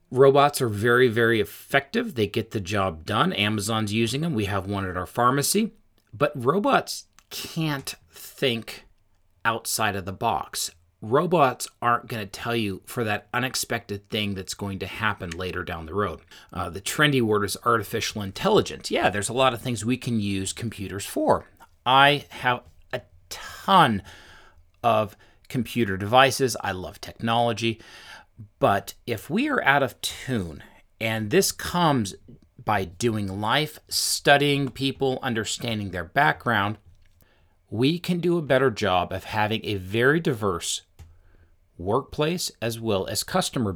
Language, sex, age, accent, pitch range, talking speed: English, male, 40-59, American, 100-130 Hz, 145 wpm